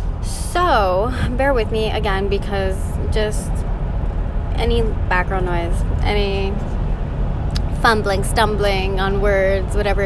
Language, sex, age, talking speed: English, female, 10-29, 95 wpm